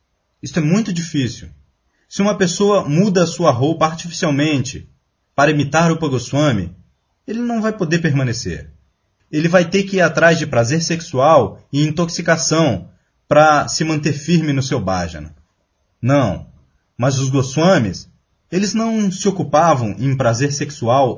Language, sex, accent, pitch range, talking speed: Portuguese, male, Brazilian, 120-175 Hz, 140 wpm